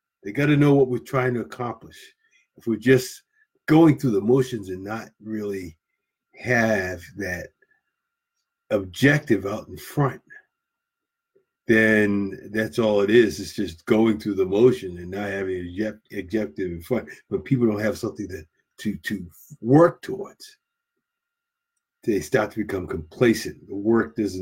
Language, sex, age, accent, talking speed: English, male, 50-69, American, 145 wpm